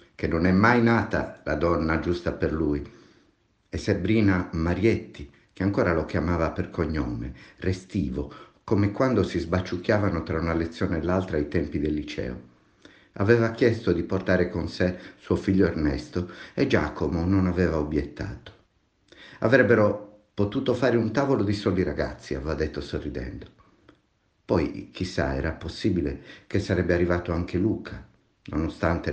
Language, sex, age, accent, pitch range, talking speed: Italian, male, 50-69, native, 80-100 Hz, 140 wpm